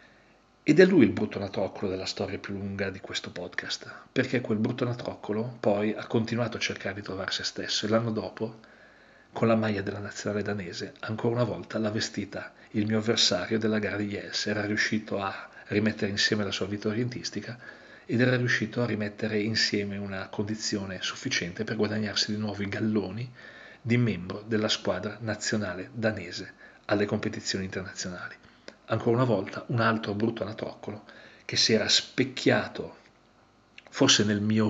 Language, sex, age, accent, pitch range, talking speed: Italian, male, 40-59, native, 100-115 Hz, 165 wpm